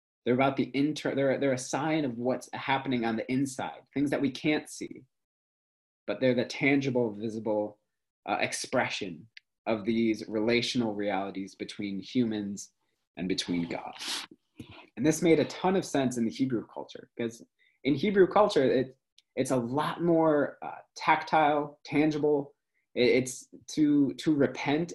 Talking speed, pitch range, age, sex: 150 wpm, 105-145 Hz, 20-39, male